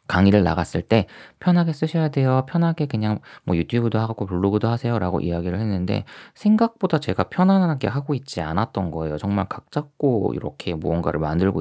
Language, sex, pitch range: Korean, male, 85-135 Hz